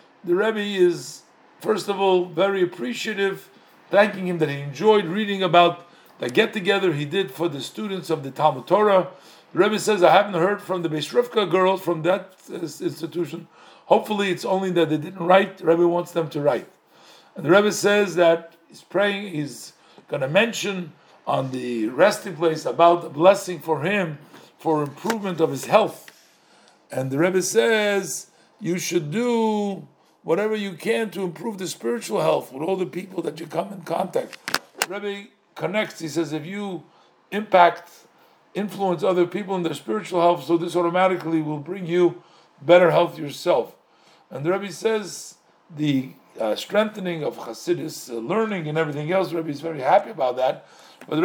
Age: 50-69